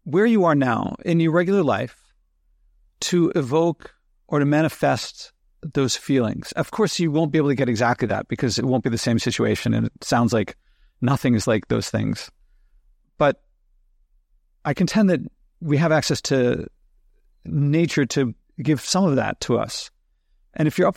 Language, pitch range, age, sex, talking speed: English, 115-155 Hz, 50-69, male, 175 wpm